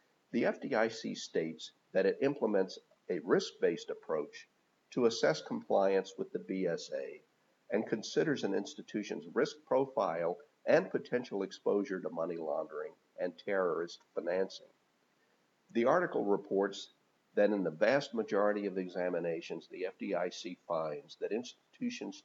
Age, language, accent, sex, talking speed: 50-69, English, American, male, 120 wpm